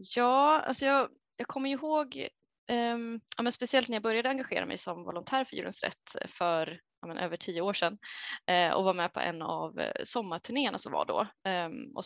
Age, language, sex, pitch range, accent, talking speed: 20-39, Swedish, female, 185-235 Hz, native, 200 wpm